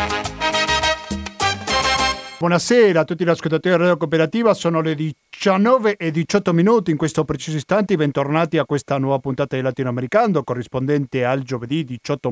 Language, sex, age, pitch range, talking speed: Italian, male, 40-59, 140-180 Hz, 140 wpm